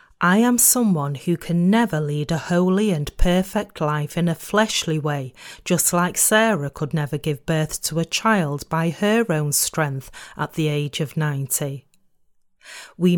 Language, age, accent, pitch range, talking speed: English, 40-59, British, 150-195 Hz, 165 wpm